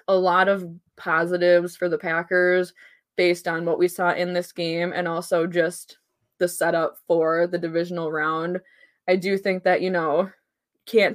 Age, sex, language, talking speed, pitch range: 20-39, female, English, 165 wpm, 175-190 Hz